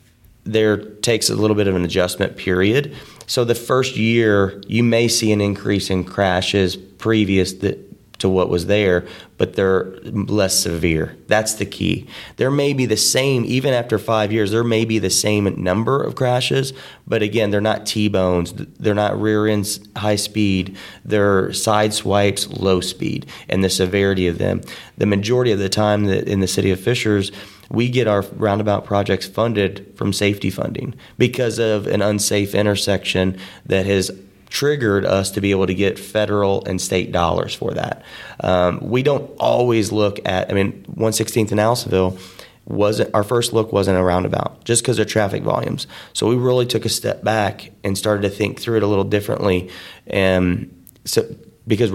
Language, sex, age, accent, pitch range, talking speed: English, male, 30-49, American, 95-110 Hz, 175 wpm